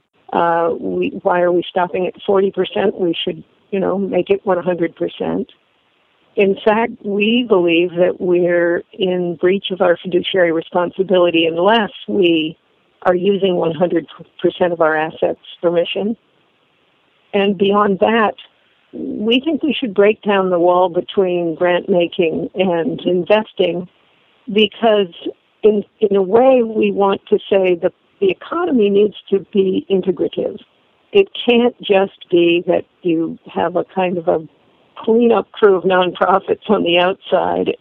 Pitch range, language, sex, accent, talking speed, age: 175-205 Hz, English, female, American, 140 wpm, 50-69